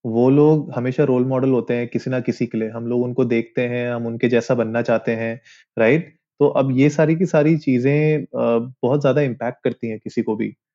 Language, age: Hindi, 20-39